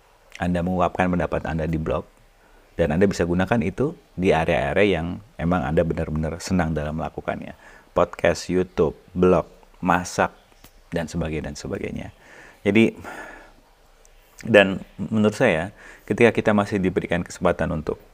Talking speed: 125 wpm